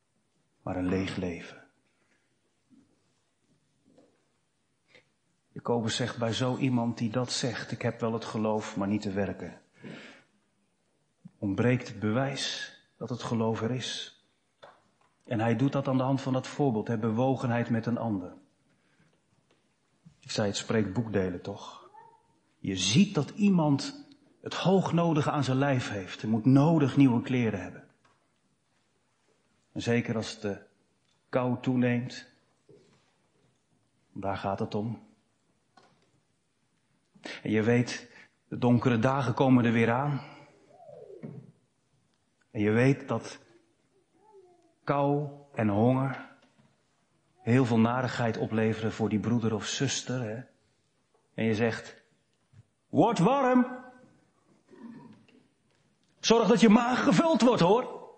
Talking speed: 120 wpm